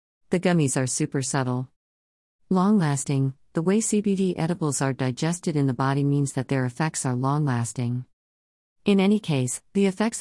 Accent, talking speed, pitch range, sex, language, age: American, 165 wpm, 130-165 Hz, female, English, 50-69